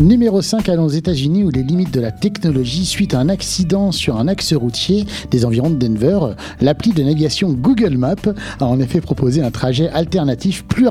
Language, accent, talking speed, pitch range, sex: French, French, 205 wpm, 140-195 Hz, male